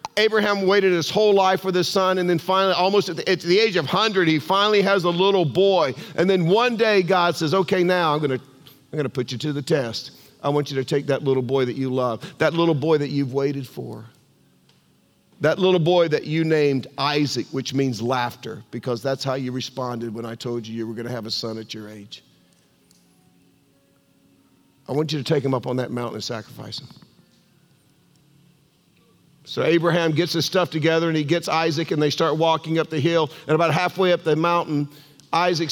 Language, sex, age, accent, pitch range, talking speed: English, male, 50-69, American, 135-180 Hz, 210 wpm